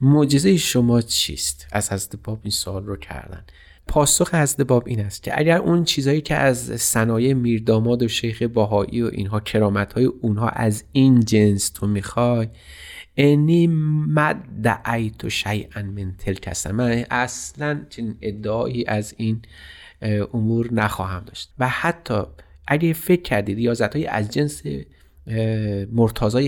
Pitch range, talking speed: 100-130 Hz, 130 wpm